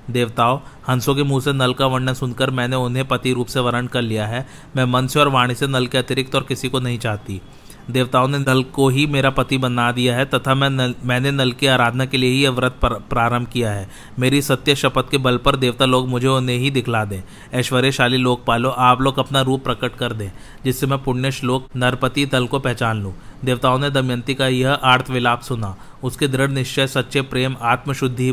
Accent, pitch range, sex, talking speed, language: native, 125-135 Hz, male, 215 wpm, Hindi